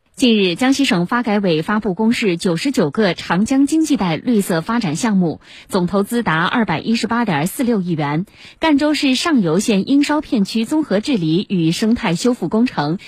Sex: female